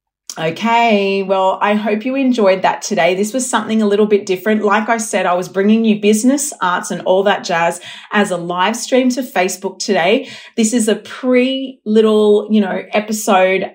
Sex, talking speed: female, 190 wpm